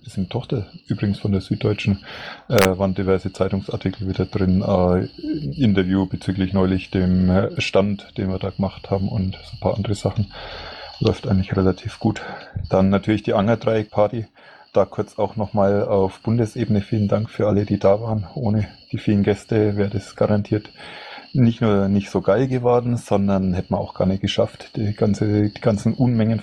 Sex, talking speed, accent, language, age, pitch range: male, 175 wpm, German, German, 30-49, 95-110 Hz